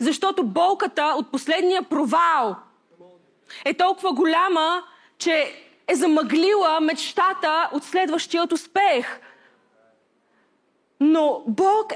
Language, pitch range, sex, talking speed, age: Bulgarian, 315-375 Hz, female, 85 wpm, 20-39